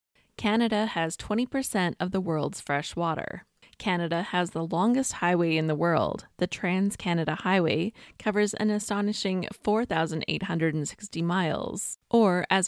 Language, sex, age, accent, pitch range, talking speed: English, female, 20-39, American, 165-215 Hz, 125 wpm